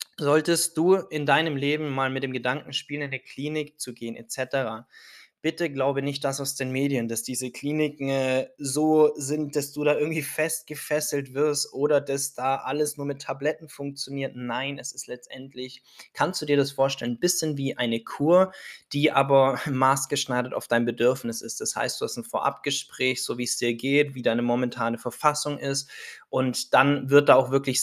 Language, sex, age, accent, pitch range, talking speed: German, male, 20-39, German, 130-150 Hz, 185 wpm